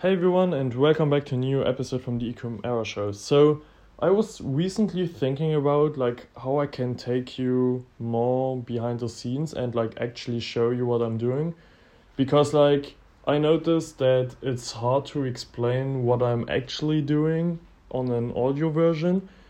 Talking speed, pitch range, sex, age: 165 wpm, 125-150 Hz, male, 20-39